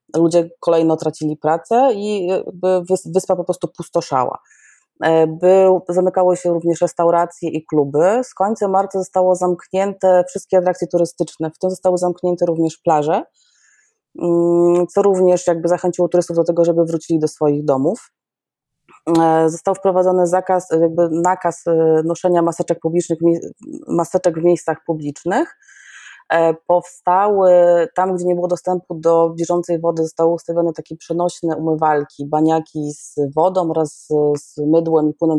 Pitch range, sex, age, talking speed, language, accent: 160-185 Hz, female, 20-39, 130 wpm, Polish, native